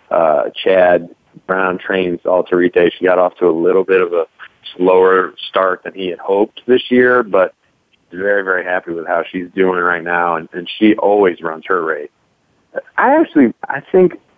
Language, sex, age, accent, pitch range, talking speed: English, male, 40-59, American, 90-110 Hz, 180 wpm